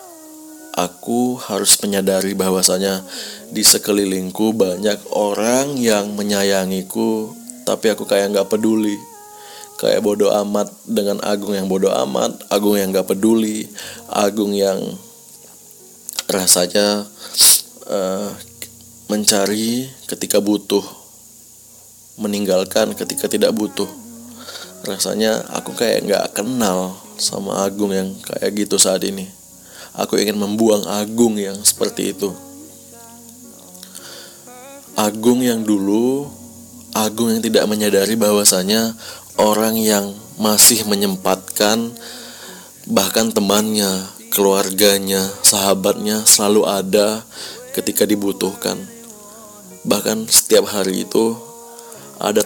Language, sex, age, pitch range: Indonesian, male, 20-39, 100-115 Hz